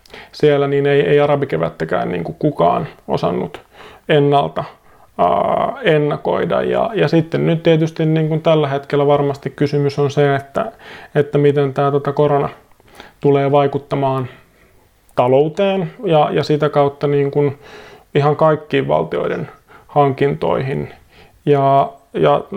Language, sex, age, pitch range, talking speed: Finnish, male, 30-49, 140-150 Hz, 100 wpm